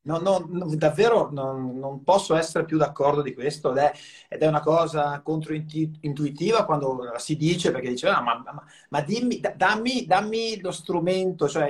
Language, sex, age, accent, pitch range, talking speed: Italian, male, 30-49, native, 145-195 Hz, 175 wpm